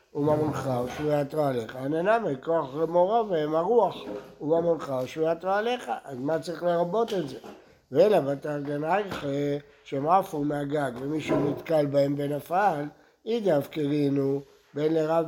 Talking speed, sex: 125 wpm, male